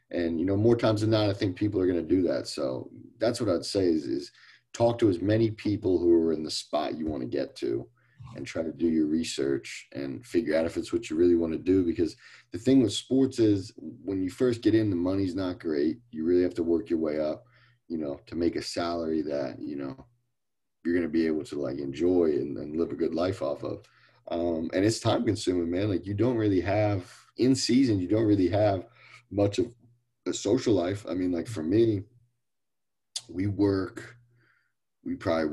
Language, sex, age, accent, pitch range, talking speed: English, male, 30-49, American, 80-120 Hz, 225 wpm